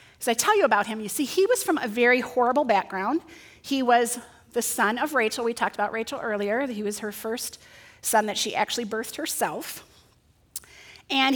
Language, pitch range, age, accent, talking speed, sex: English, 210-275 Hz, 30-49, American, 195 wpm, female